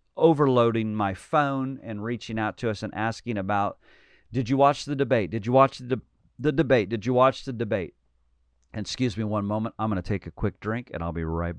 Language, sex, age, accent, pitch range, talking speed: English, male, 40-59, American, 95-120 Hz, 230 wpm